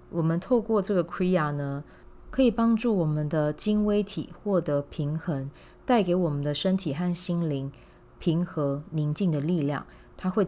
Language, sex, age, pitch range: Chinese, female, 30-49, 145-185 Hz